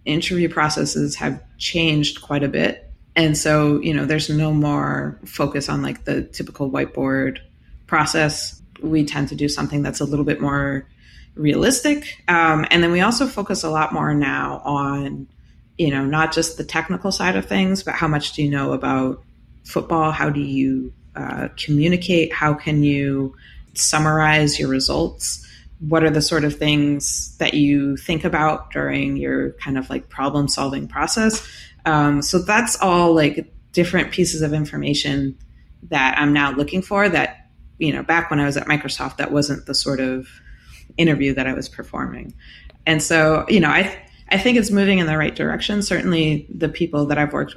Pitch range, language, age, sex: 140-160 Hz, English, 30-49, female